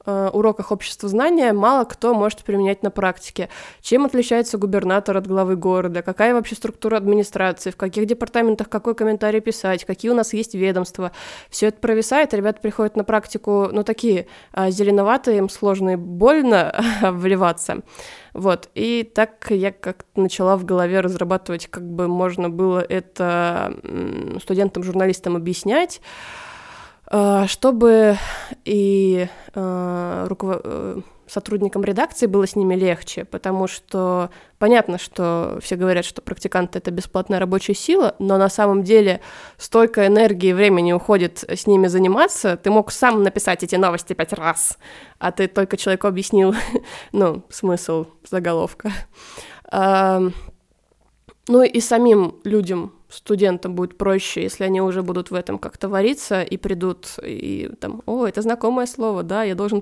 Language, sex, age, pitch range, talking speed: Russian, female, 20-39, 185-220 Hz, 135 wpm